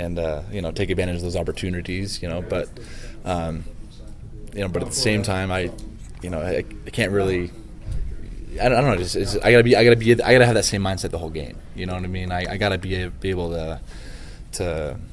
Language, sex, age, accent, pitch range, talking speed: English, male, 20-39, American, 85-105 Hz, 250 wpm